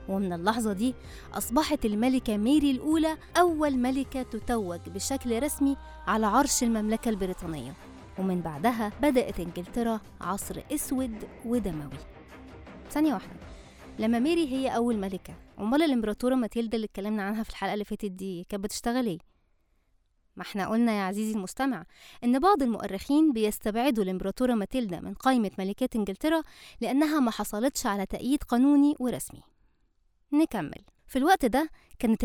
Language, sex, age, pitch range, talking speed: Arabic, female, 20-39, 200-270 Hz, 130 wpm